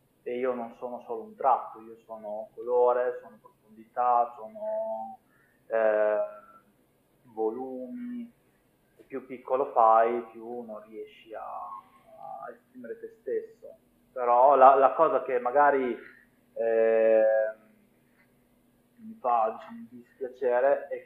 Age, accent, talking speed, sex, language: 20-39, native, 105 wpm, male, Italian